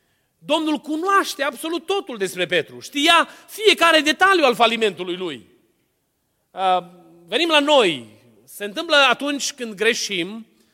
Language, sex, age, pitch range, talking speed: Romanian, male, 30-49, 205-285 Hz, 110 wpm